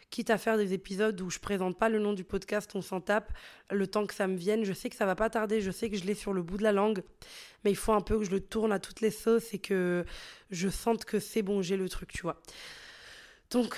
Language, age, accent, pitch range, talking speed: French, 20-39, French, 195-225 Hz, 295 wpm